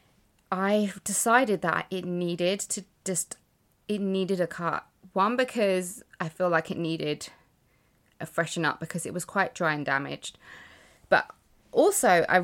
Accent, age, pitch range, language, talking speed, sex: British, 20-39, 165-225 Hz, English, 150 wpm, female